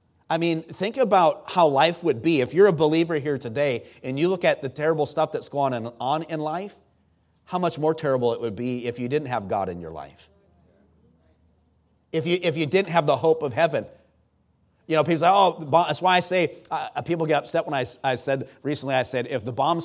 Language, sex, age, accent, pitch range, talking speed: English, male, 40-59, American, 125-160 Hz, 225 wpm